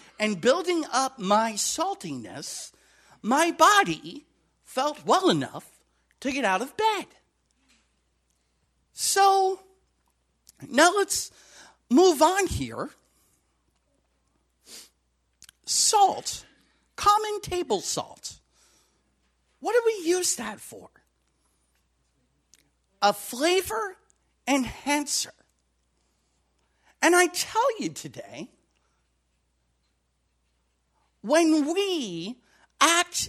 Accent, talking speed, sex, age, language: American, 75 wpm, male, 50-69, English